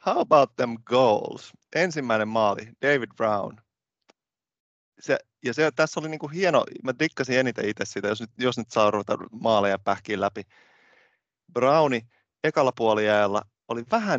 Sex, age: male, 30-49